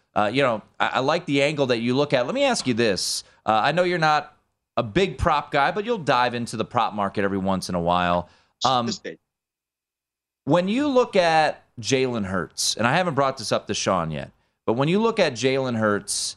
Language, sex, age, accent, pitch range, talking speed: English, male, 30-49, American, 95-135 Hz, 225 wpm